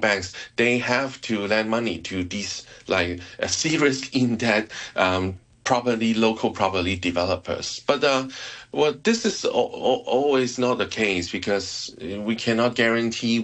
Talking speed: 145 wpm